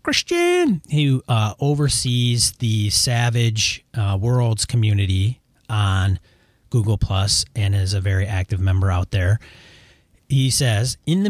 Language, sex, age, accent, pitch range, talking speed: English, male, 40-59, American, 100-120 Hz, 120 wpm